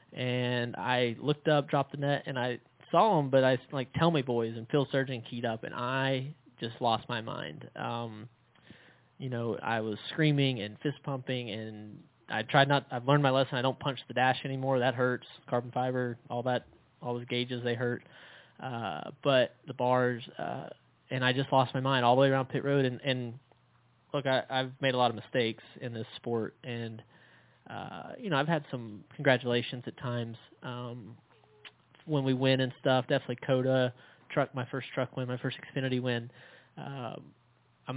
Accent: American